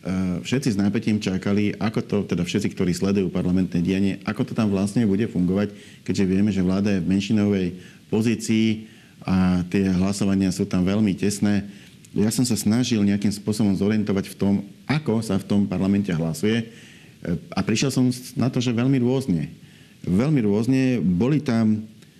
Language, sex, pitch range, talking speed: Slovak, male, 95-110 Hz, 160 wpm